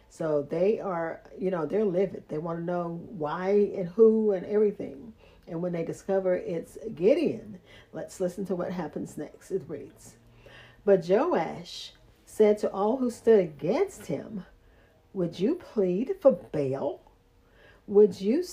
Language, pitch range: English, 170-225 Hz